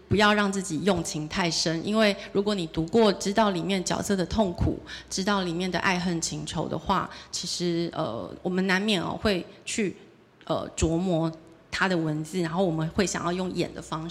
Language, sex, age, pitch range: Chinese, female, 30-49, 165-205 Hz